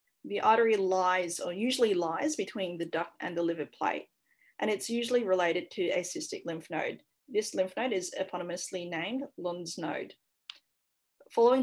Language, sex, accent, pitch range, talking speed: English, female, Australian, 175-230 Hz, 160 wpm